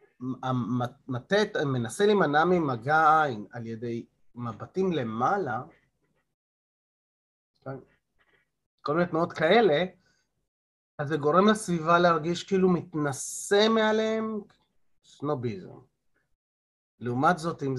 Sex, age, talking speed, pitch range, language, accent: male, 30-49, 85 wpm, 120-175 Hz, Hebrew, native